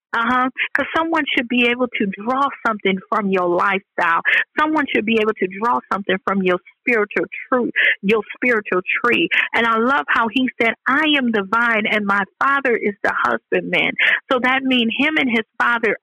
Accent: American